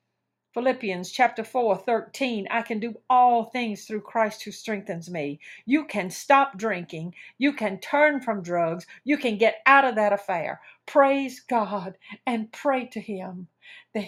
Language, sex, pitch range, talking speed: English, female, 190-230 Hz, 160 wpm